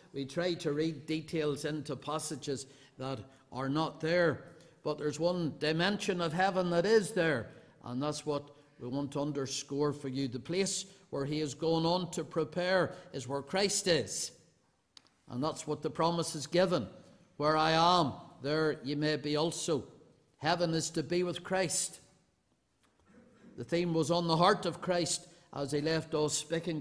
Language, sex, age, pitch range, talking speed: English, male, 50-69, 150-175 Hz, 170 wpm